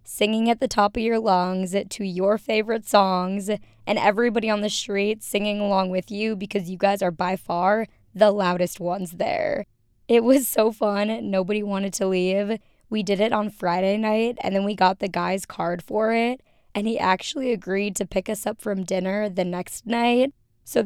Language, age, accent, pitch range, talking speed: English, 20-39, American, 185-215 Hz, 195 wpm